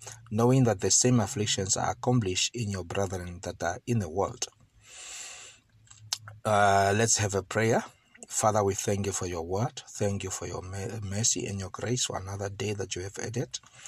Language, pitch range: English, 100-120 Hz